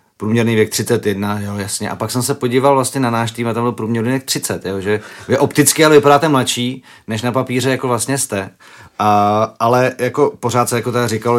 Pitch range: 105-130 Hz